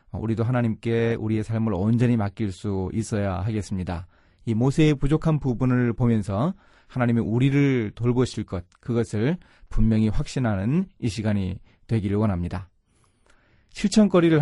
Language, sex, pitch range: Korean, male, 105-145 Hz